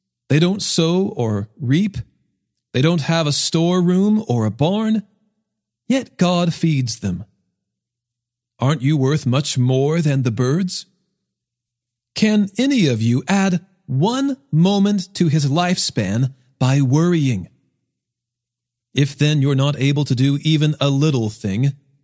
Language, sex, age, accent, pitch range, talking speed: English, male, 40-59, American, 120-175 Hz, 130 wpm